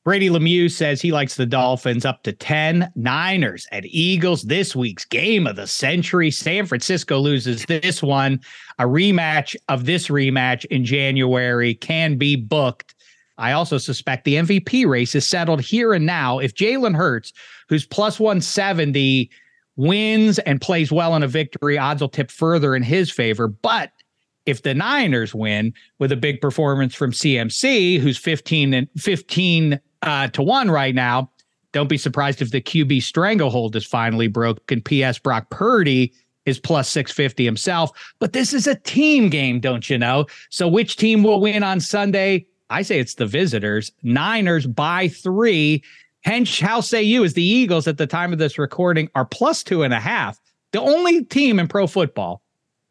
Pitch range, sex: 130-180 Hz, male